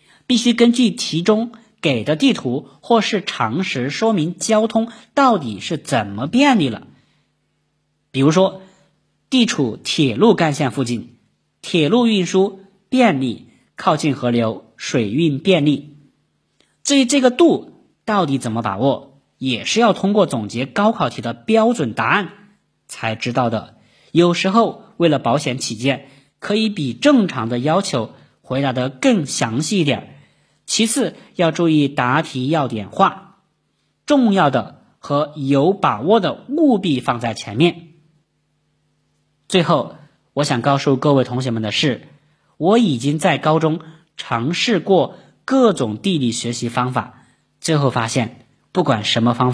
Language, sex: Chinese, male